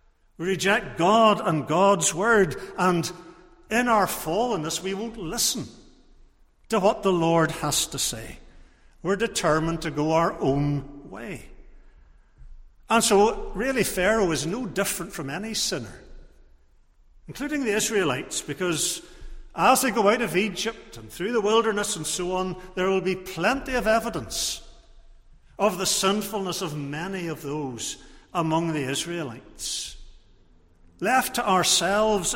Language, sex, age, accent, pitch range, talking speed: English, male, 60-79, British, 130-195 Hz, 135 wpm